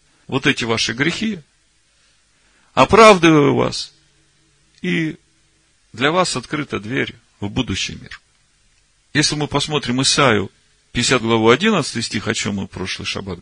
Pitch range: 105-140 Hz